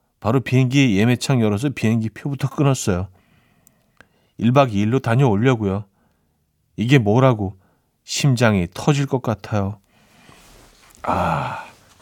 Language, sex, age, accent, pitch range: Korean, male, 40-59, native, 105-150 Hz